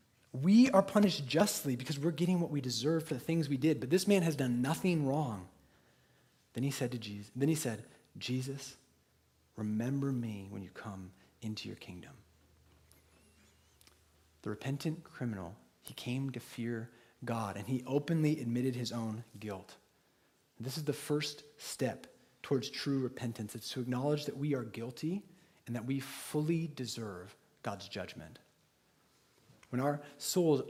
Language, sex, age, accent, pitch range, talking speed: English, male, 30-49, American, 115-150 Hz, 155 wpm